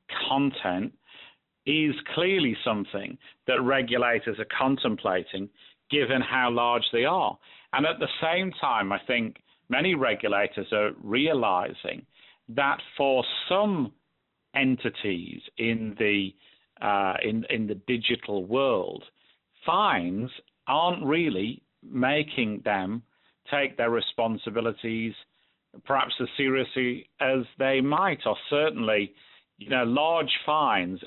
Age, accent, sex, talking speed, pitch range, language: 50-69, British, male, 110 wpm, 110-130 Hz, English